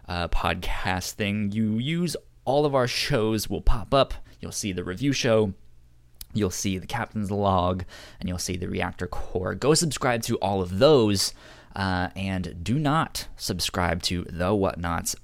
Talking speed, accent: 165 wpm, American